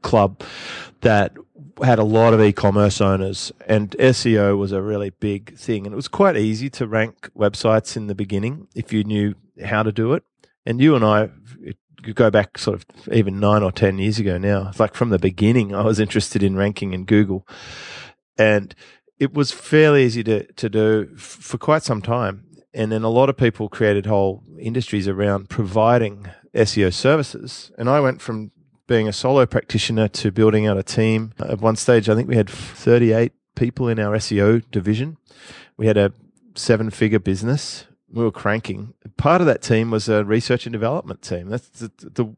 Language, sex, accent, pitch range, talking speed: English, male, Australian, 105-120 Hz, 190 wpm